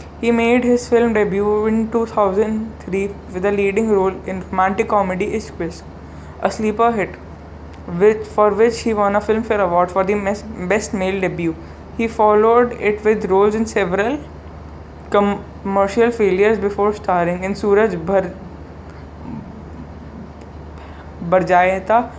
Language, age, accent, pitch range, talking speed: English, 20-39, Indian, 175-210 Hz, 120 wpm